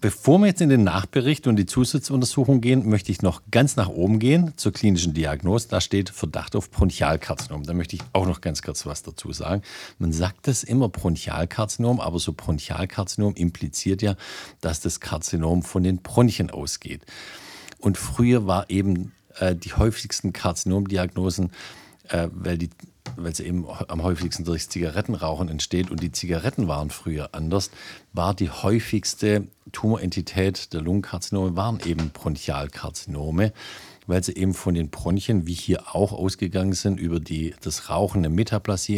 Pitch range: 85-100 Hz